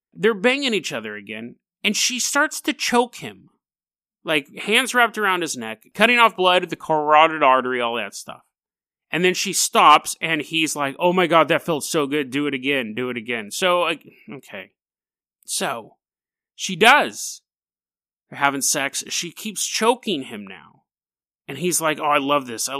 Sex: male